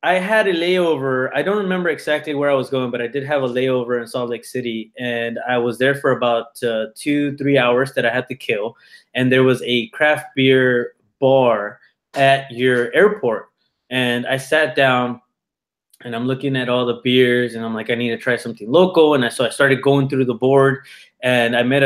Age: 20-39